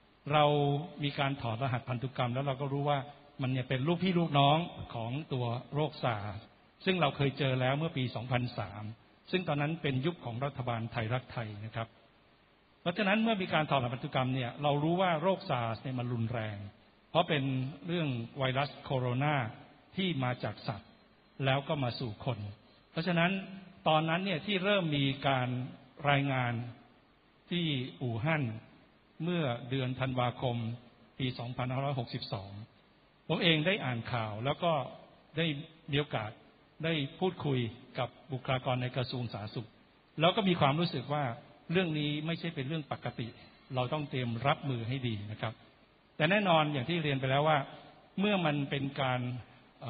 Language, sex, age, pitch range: Thai, male, 60-79, 120-150 Hz